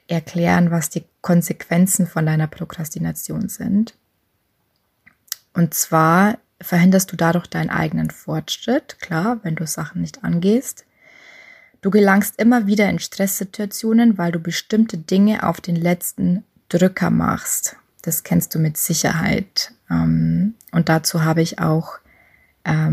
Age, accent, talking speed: 20-39, German, 125 wpm